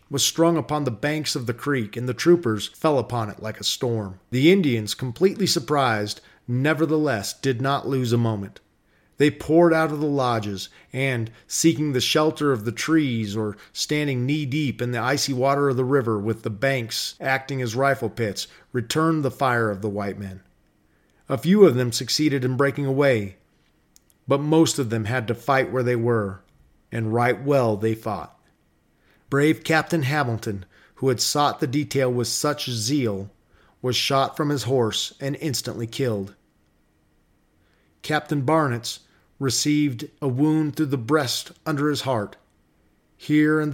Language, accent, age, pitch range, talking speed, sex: English, American, 40-59, 110-145 Hz, 165 wpm, male